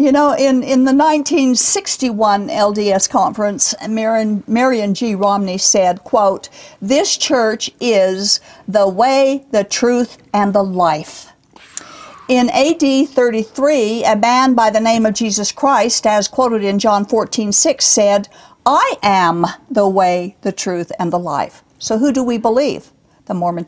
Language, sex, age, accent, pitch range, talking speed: English, female, 60-79, American, 210-265 Hz, 140 wpm